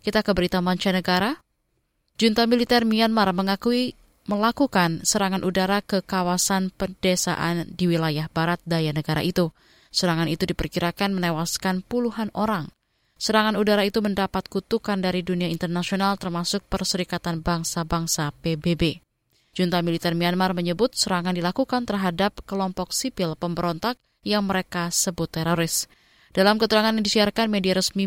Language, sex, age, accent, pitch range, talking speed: Indonesian, female, 20-39, native, 175-210 Hz, 125 wpm